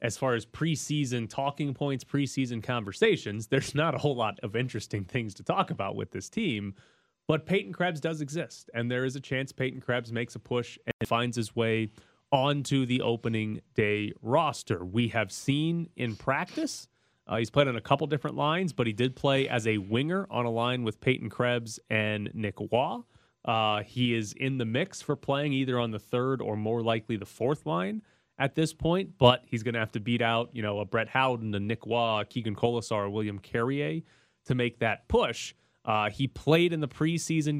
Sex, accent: male, American